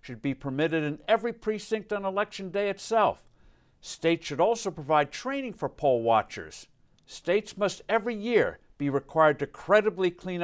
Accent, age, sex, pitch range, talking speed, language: American, 60-79, male, 145-210 Hz, 155 wpm, English